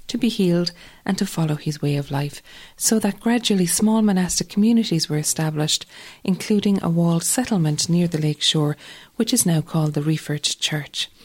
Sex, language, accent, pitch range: female, English, Irish, 155-205 Hz